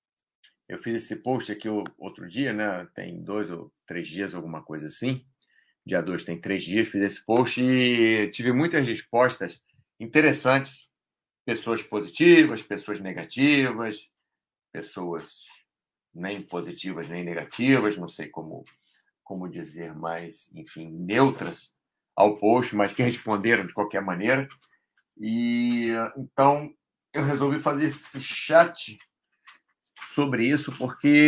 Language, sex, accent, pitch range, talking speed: Portuguese, male, Brazilian, 105-140 Hz, 125 wpm